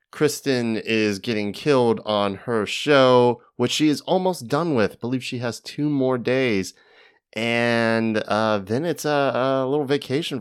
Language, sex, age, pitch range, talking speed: English, male, 30-49, 90-115 Hz, 155 wpm